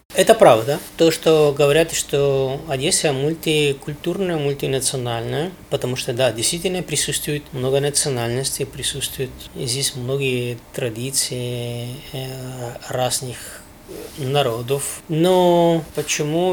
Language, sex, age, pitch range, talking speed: Ukrainian, male, 20-39, 130-160 Hz, 85 wpm